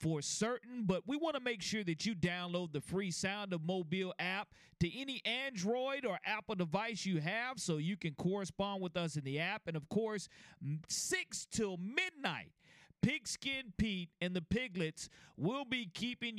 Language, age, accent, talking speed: English, 40-59, American, 175 wpm